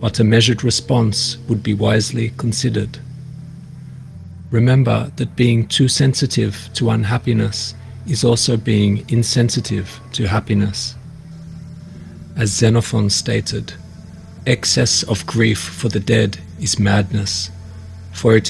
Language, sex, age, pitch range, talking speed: English, male, 40-59, 100-120 Hz, 110 wpm